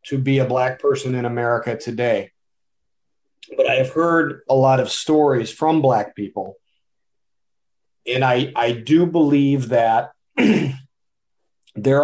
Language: English